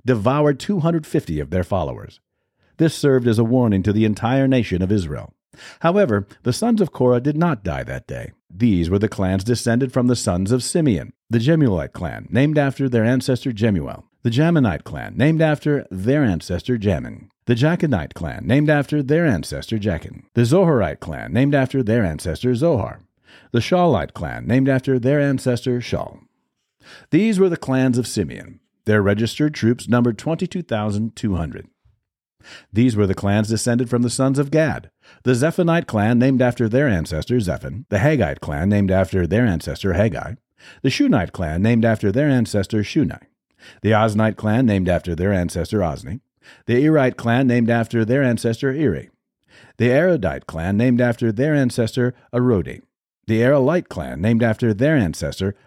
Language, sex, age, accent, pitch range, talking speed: English, male, 50-69, American, 100-135 Hz, 165 wpm